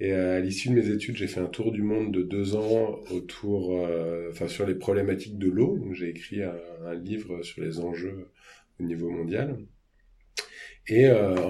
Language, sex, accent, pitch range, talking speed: French, male, French, 85-100 Hz, 195 wpm